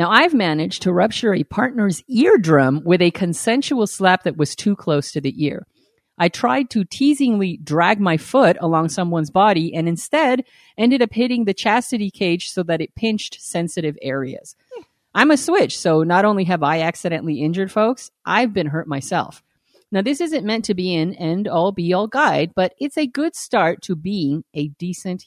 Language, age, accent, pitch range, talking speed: English, 40-59, American, 170-245 Hz, 185 wpm